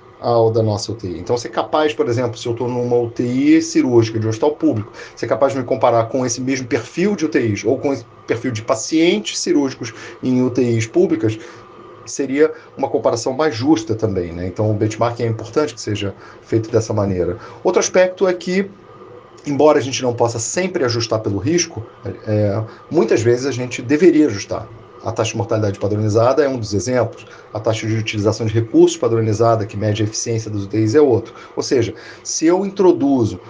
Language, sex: Portuguese, male